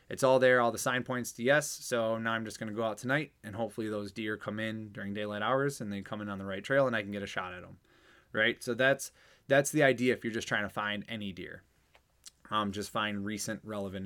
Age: 20-39